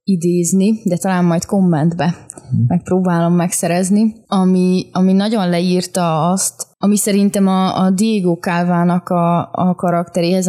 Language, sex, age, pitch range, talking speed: Hungarian, female, 20-39, 170-200 Hz, 120 wpm